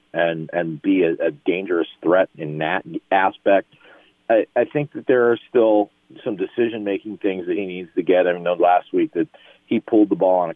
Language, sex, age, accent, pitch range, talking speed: English, male, 40-59, American, 85-110 Hz, 215 wpm